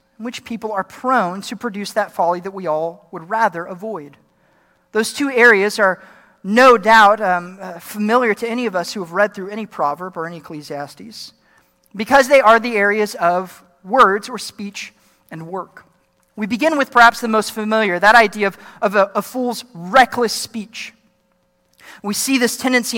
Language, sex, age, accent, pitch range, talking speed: English, male, 40-59, American, 190-240 Hz, 175 wpm